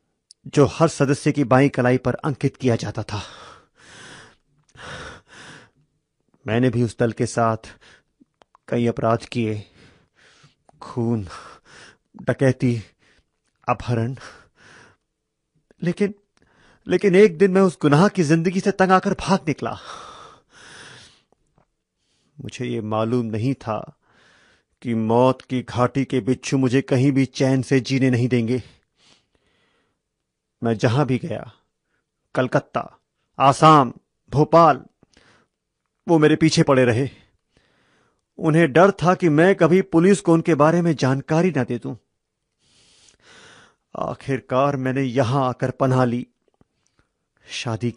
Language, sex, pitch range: Hindi, male, 120-165 Hz